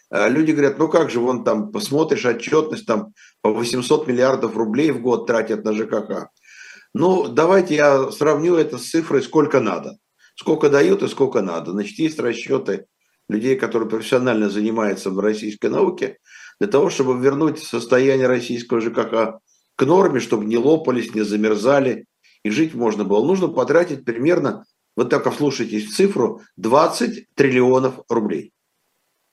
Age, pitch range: 50-69, 110-140 Hz